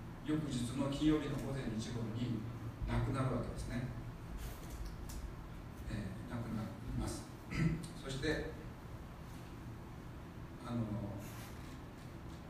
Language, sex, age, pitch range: Japanese, male, 40-59, 115-140 Hz